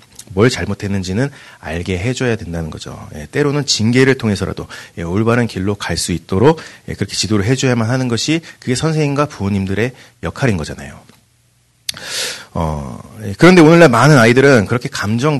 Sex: male